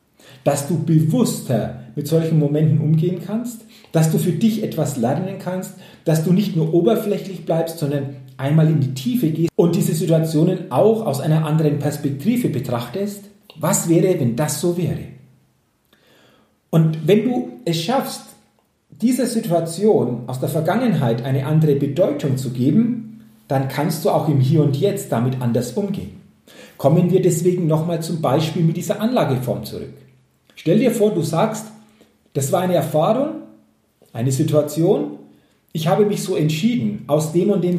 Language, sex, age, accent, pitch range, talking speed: German, male, 40-59, German, 145-195 Hz, 155 wpm